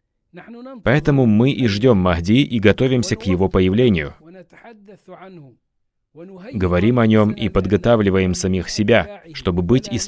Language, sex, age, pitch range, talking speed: Russian, male, 30-49, 95-135 Hz, 120 wpm